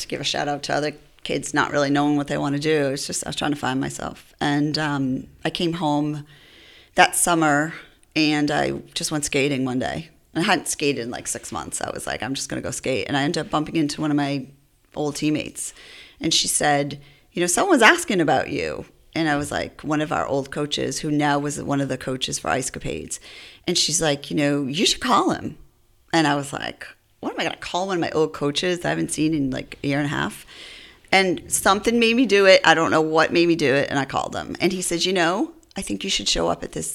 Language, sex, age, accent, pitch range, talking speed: English, female, 30-49, American, 145-170 Hz, 255 wpm